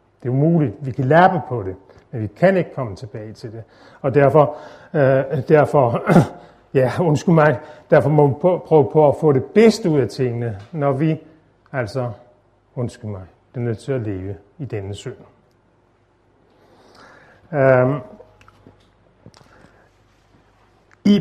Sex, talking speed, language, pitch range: male, 135 wpm, Danish, 125-160 Hz